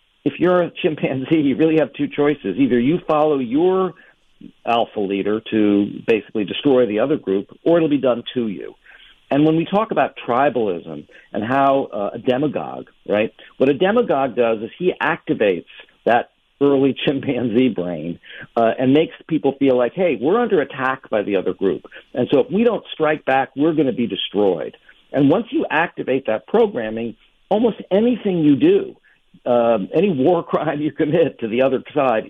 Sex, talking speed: male, 180 wpm